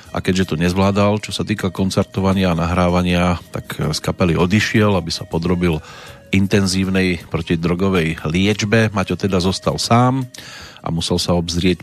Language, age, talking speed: Slovak, 40-59, 145 wpm